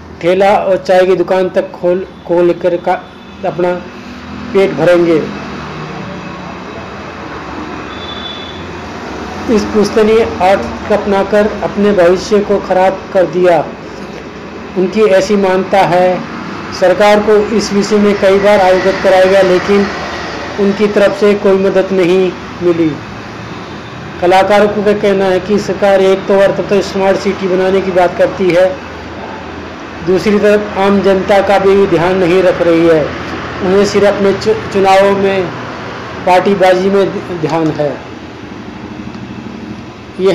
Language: Hindi